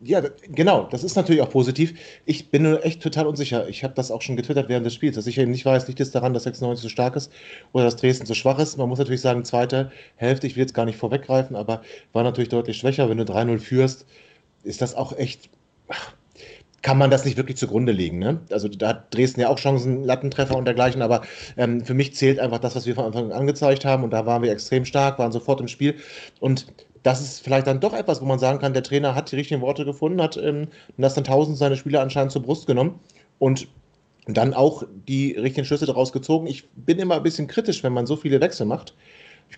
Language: German